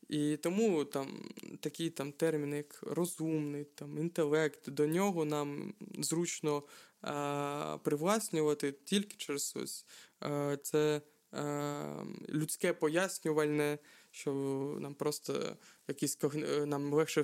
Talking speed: 110 wpm